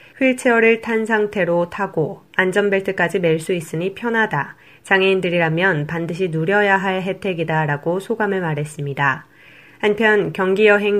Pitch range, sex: 165-200 Hz, female